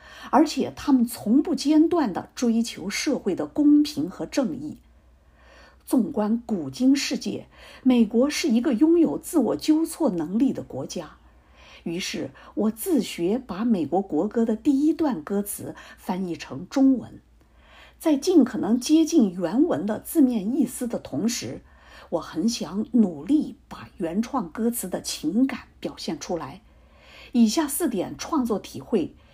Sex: female